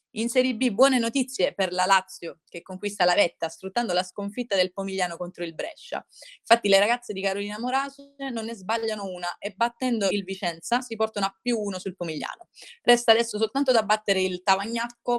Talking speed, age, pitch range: 190 wpm, 20-39, 175-220 Hz